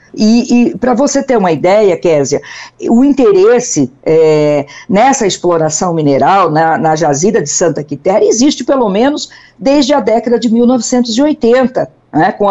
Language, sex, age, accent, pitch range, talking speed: Portuguese, female, 50-69, Brazilian, 180-250 Hz, 140 wpm